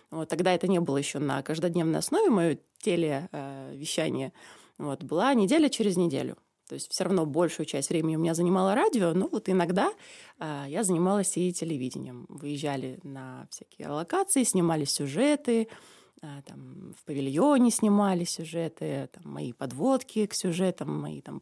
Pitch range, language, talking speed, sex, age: 150-195 Hz, Russian, 150 wpm, female, 20-39